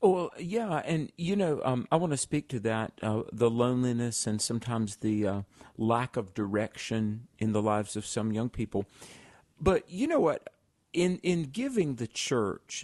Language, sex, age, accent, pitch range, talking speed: English, male, 50-69, American, 105-120 Hz, 180 wpm